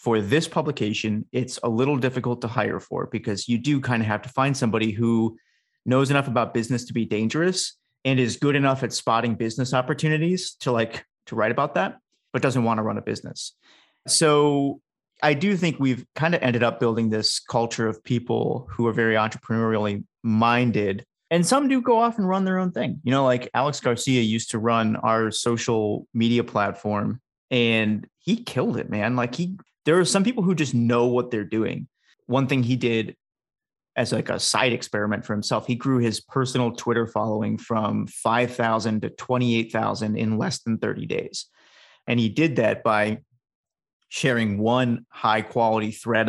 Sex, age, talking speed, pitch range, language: male, 30-49, 185 wpm, 110-135 Hz, English